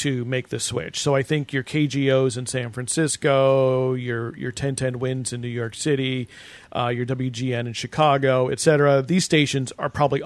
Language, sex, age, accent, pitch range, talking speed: English, male, 40-59, American, 130-170 Hz, 175 wpm